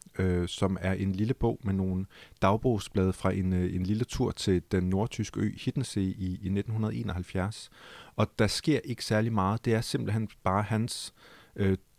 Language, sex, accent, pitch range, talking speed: Danish, male, native, 95-110 Hz, 175 wpm